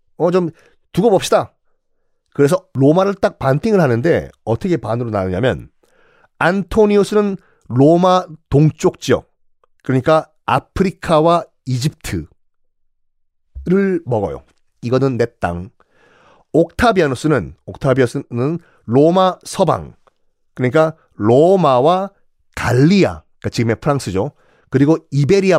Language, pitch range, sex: Korean, 125-205 Hz, male